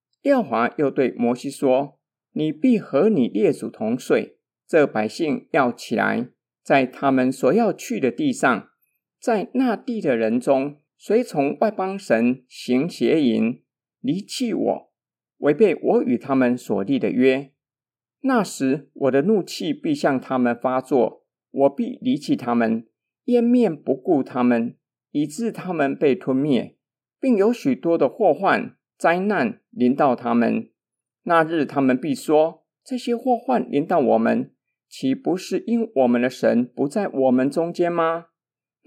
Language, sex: Chinese, male